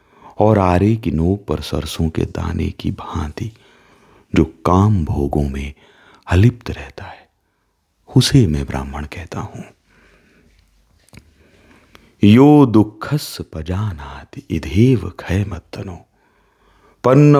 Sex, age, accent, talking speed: male, 40-59, native, 95 wpm